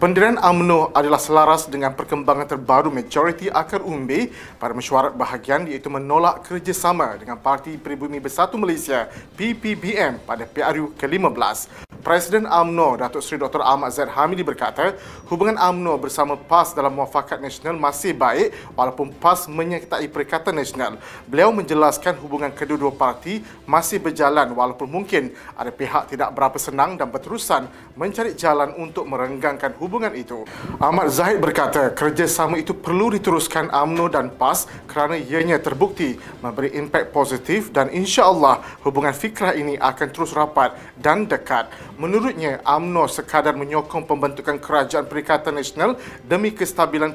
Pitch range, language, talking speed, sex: 140-175 Hz, Malay, 135 wpm, male